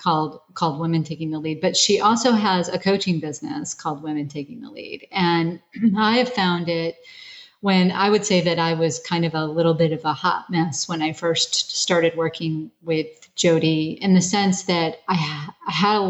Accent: American